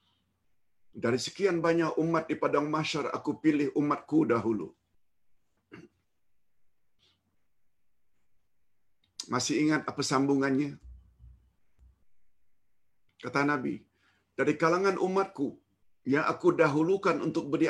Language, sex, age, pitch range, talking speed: Malayalam, male, 50-69, 115-160 Hz, 80 wpm